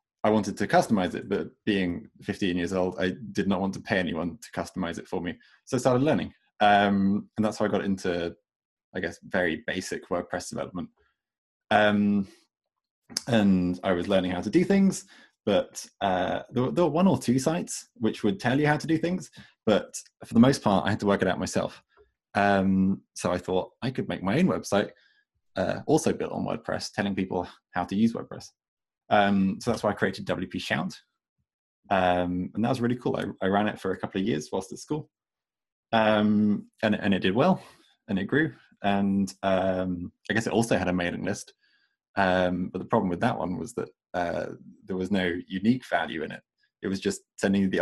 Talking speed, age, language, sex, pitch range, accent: 205 wpm, 20-39, English, male, 95-115 Hz, British